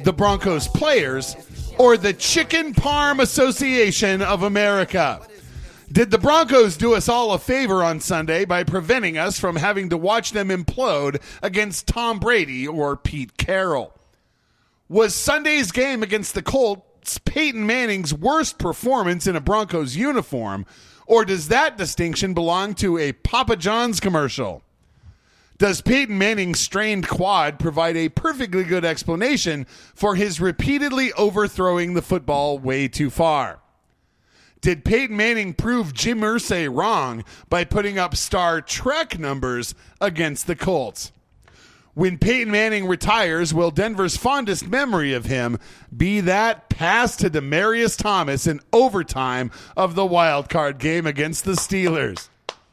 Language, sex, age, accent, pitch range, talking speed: English, male, 40-59, American, 160-225 Hz, 135 wpm